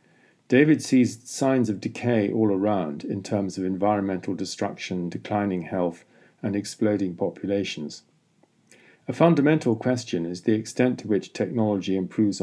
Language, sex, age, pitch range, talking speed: English, male, 50-69, 95-120 Hz, 130 wpm